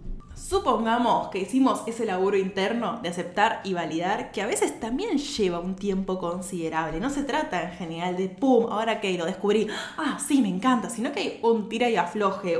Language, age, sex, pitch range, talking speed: Spanish, 20-39, female, 180-235 Hz, 190 wpm